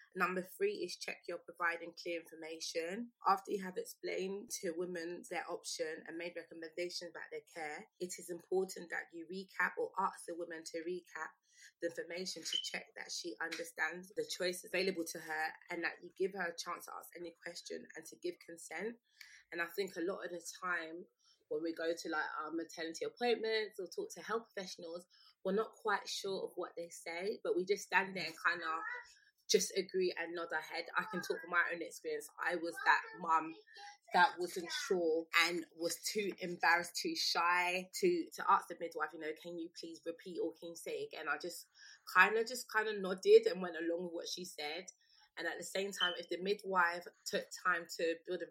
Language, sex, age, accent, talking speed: English, female, 20-39, British, 205 wpm